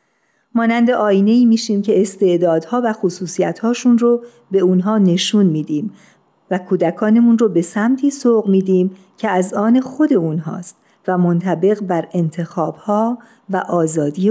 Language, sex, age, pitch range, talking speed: Persian, female, 50-69, 180-225 Hz, 130 wpm